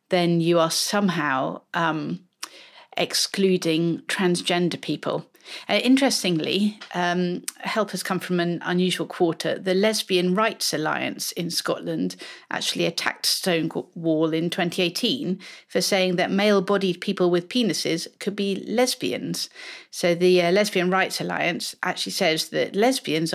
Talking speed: 125 wpm